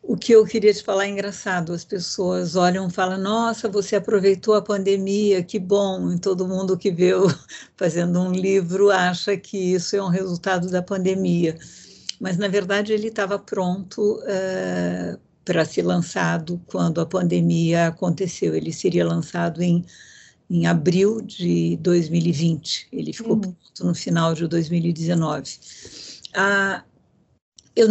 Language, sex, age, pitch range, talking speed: Portuguese, female, 50-69, 170-200 Hz, 140 wpm